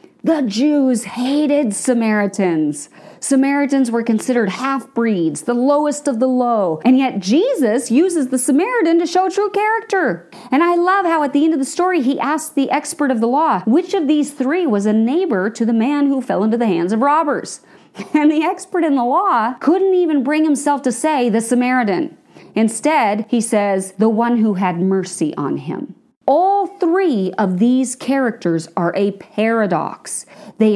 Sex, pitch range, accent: female, 200-300 Hz, American